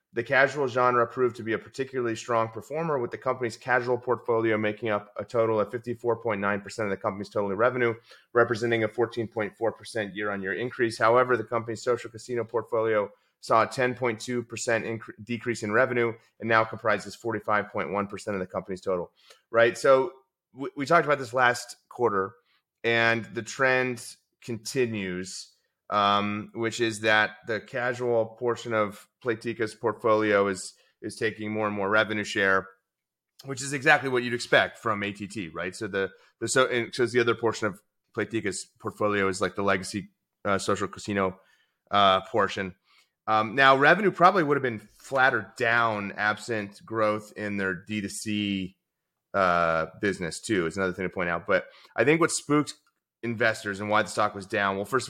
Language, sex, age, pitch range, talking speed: English, male, 30-49, 105-120 Hz, 165 wpm